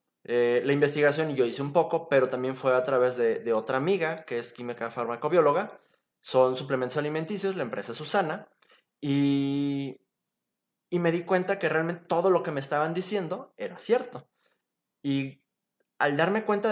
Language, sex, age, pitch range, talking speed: Spanish, male, 20-39, 130-165 Hz, 170 wpm